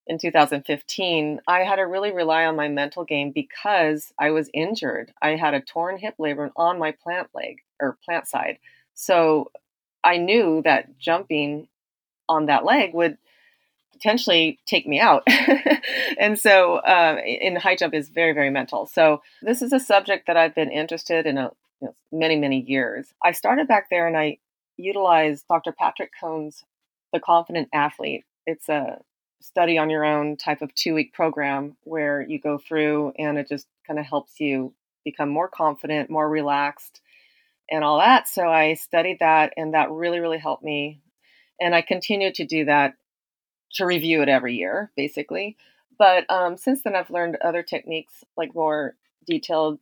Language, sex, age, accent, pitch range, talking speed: English, female, 30-49, American, 150-175 Hz, 170 wpm